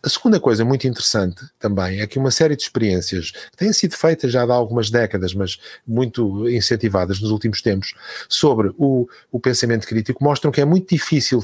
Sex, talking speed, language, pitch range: male, 190 wpm, Portuguese, 105-140 Hz